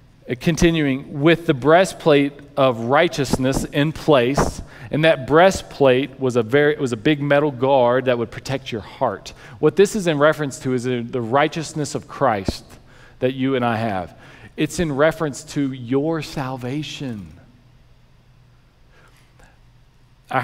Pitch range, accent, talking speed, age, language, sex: 125-150 Hz, American, 140 wpm, 40-59, English, male